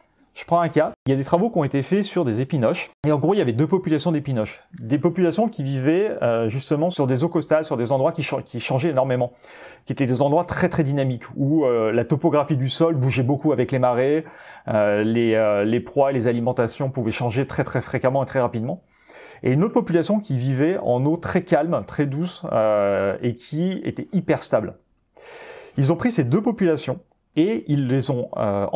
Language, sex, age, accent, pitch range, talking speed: French, male, 30-49, French, 120-165 Hz, 215 wpm